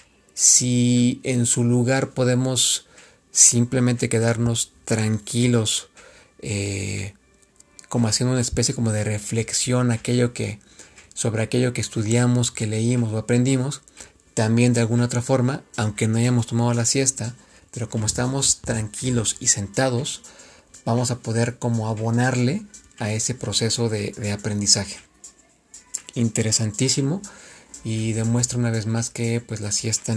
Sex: male